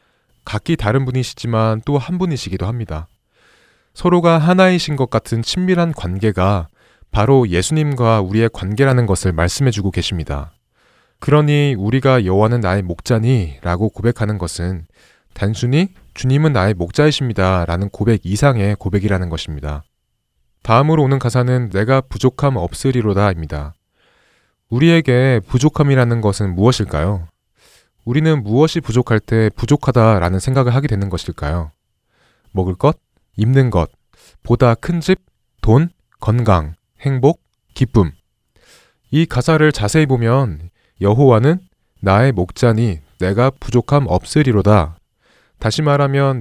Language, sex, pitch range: Korean, male, 95-135 Hz